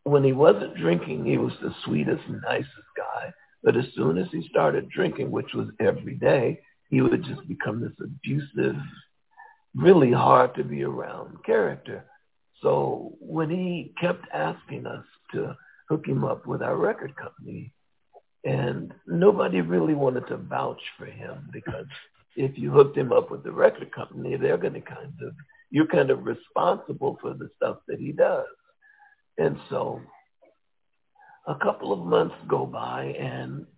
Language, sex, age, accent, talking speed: English, male, 60-79, American, 160 wpm